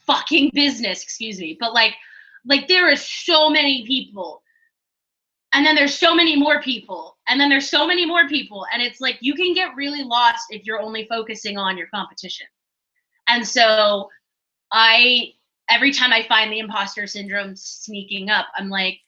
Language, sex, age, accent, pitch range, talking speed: English, female, 20-39, American, 200-285 Hz, 175 wpm